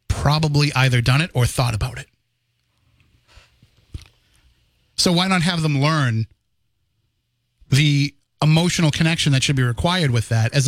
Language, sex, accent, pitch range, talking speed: English, male, American, 125-160 Hz, 135 wpm